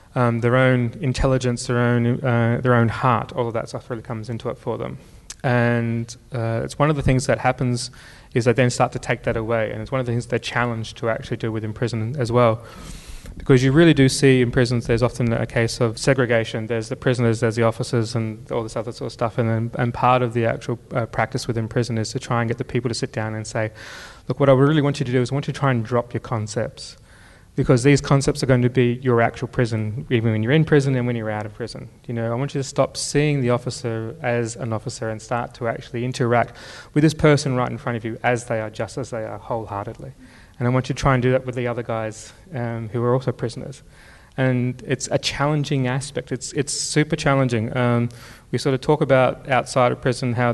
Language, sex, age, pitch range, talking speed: English, male, 20-39, 115-130 Hz, 250 wpm